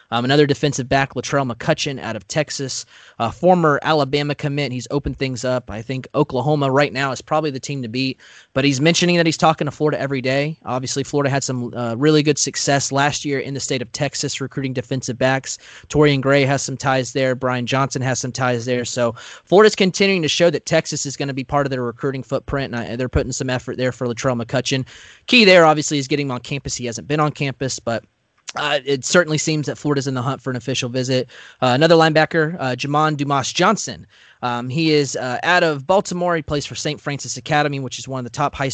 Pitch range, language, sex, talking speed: 130-150 Hz, English, male, 230 wpm